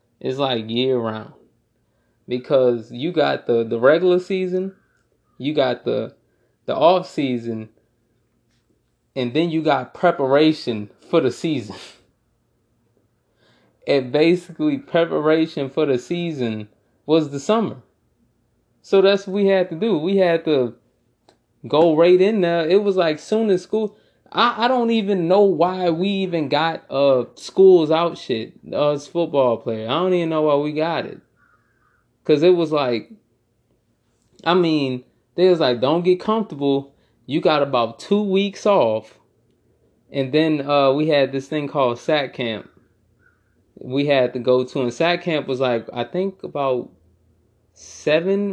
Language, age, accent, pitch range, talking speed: English, 20-39, American, 120-180 Hz, 150 wpm